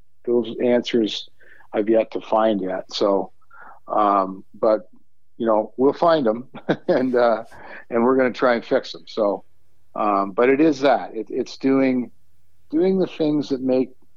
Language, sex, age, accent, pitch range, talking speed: English, male, 50-69, American, 110-130 Hz, 160 wpm